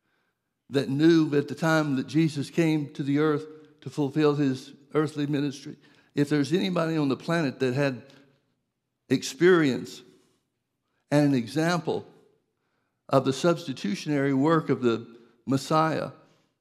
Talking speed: 125 wpm